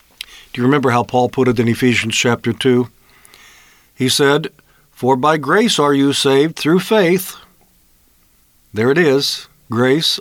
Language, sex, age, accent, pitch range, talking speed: English, male, 50-69, American, 125-150 Hz, 145 wpm